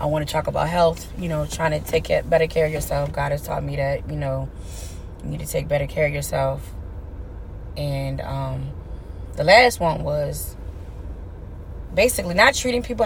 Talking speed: 185 wpm